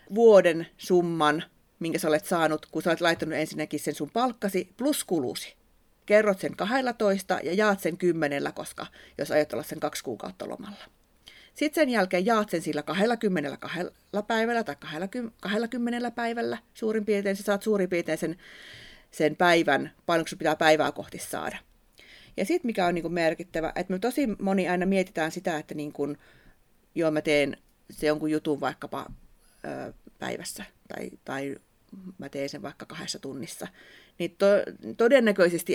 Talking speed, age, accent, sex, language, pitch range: 155 wpm, 30-49, native, female, Finnish, 150-205 Hz